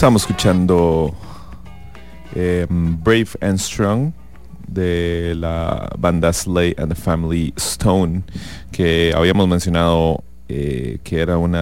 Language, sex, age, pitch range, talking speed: English, male, 30-49, 80-95 Hz, 110 wpm